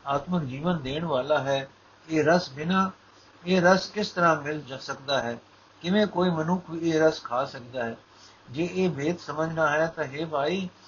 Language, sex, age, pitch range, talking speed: Punjabi, male, 60-79, 130-170 Hz, 180 wpm